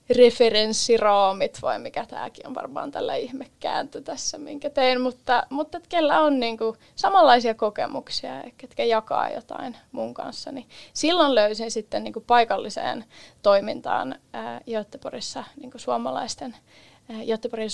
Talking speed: 120 wpm